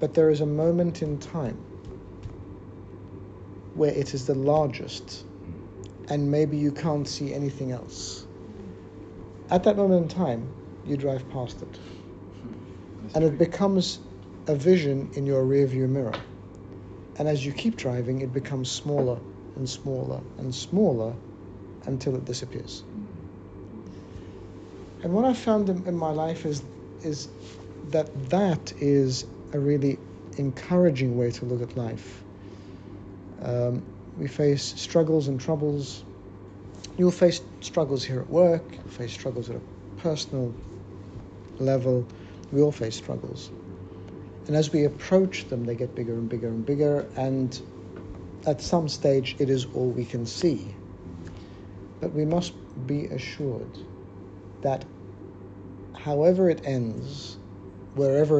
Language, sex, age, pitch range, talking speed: English, male, 60-79, 95-145 Hz, 130 wpm